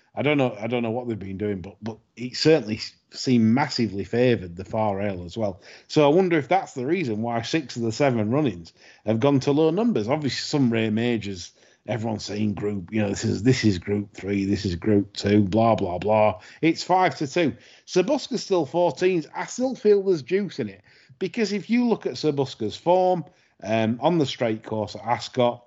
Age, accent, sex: 30-49, British, male